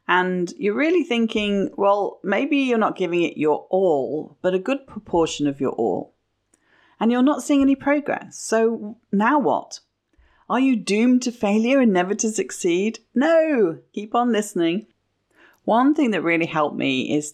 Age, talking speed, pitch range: 40-59, 165 wpm, 165-245 Hz